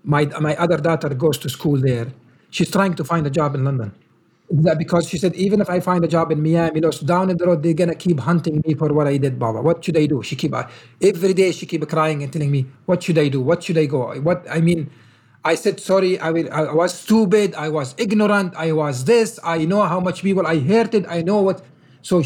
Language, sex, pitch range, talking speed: English, male, 160-225 Hz, 265 wpm